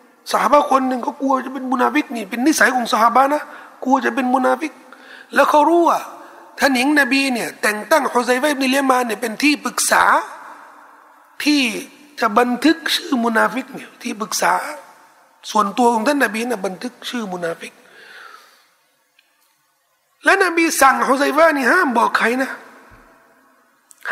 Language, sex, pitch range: Thai, male, 210-275 Hz